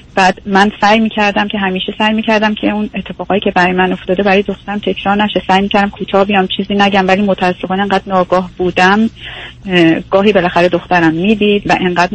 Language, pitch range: Persian, 180-205 Hz